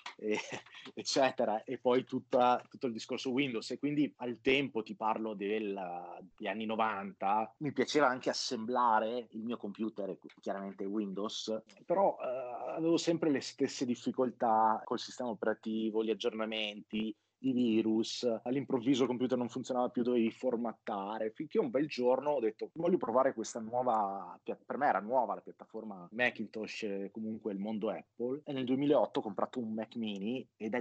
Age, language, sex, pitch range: 30-49, Italian, male, 110-125 Hz